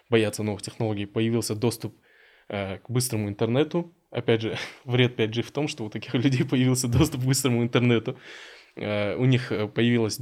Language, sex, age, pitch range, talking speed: Russian, male, 20-39, 110-125 Hz, 165 wpm